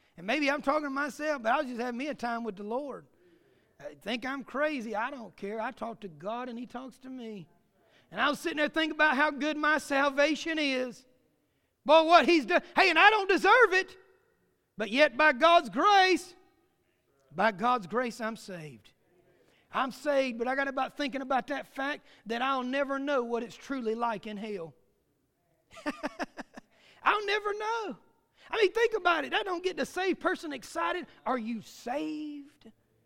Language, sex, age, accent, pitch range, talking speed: English, male, 40-59, American, 245-330 Hz, 185 wpm